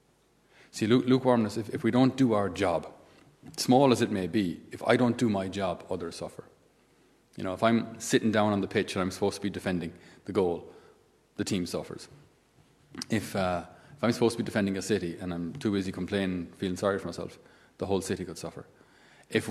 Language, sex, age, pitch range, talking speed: English, male, 30-49, 95-120 Hz, 210 wpm